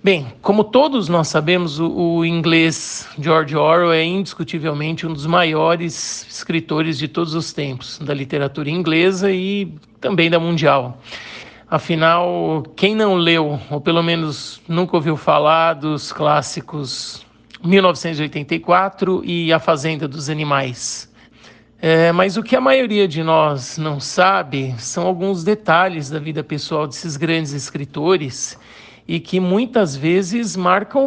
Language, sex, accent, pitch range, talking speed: Portuguese, male, Brazilian, 150-180 Hz, 130 wpm